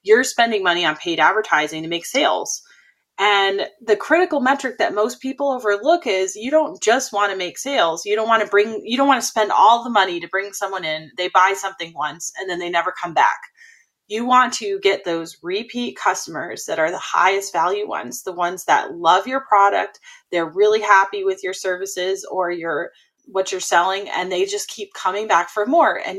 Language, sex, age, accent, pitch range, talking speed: English, female, 30-49, American, 180-250 Hz, 210 wpm